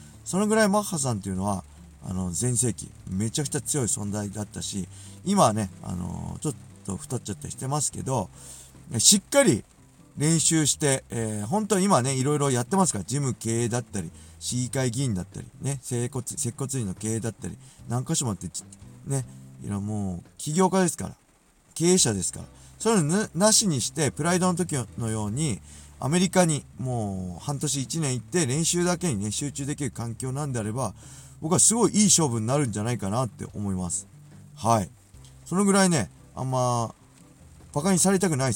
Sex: male